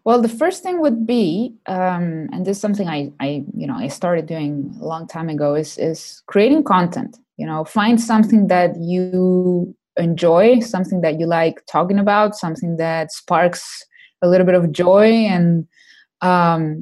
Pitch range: 170-210 Hz